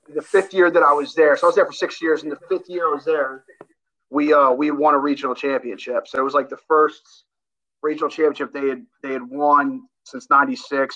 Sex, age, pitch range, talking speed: male, 30-49, 135-185 Hz, 235 wpm